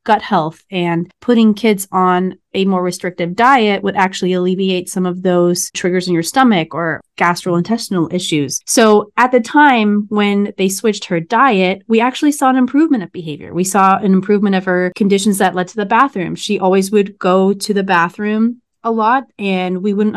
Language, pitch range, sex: English, 180-215 Hz, female